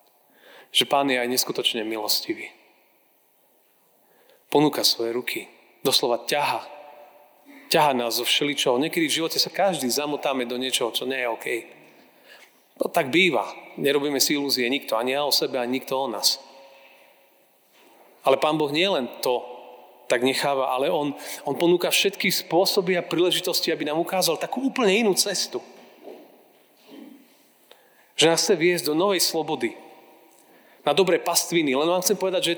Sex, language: male, Slovak